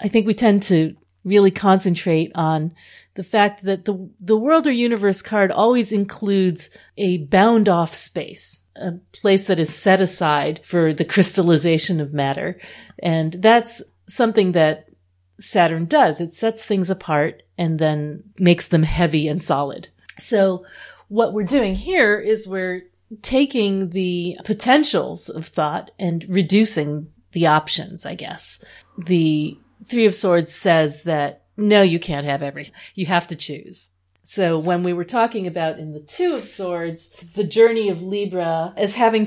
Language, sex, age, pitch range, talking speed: English, female, 40-59, 160-200 Hz, 155 wpm